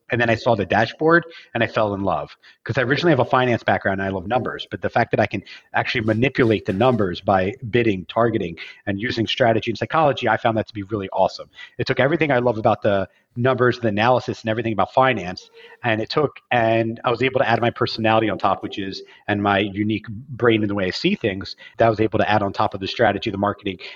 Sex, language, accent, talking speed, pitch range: male, English, American, 250 wpm, 100-125 Hz